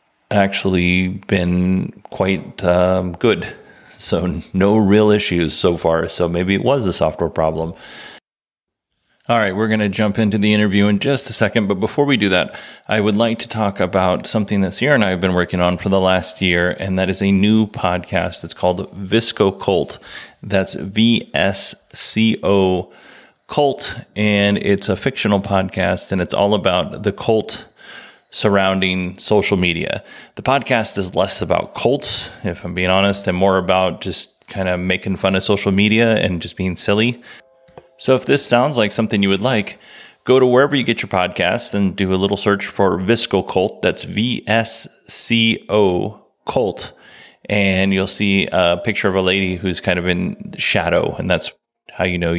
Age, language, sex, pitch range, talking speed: 30-49, English, male, 90-110 Hz, 180 wpm